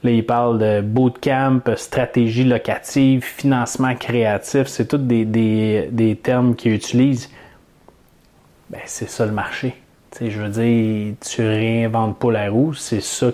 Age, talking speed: 30-49, 155 wpm